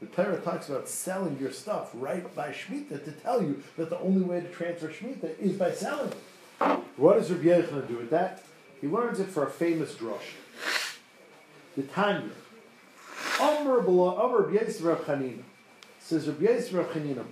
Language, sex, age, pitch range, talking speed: English, male, 50-69, 155-210 Hz, 160 wpm